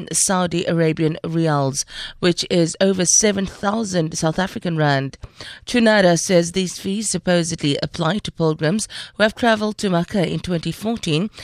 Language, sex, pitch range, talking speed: English, female, 140-190 Hz, 130 wpm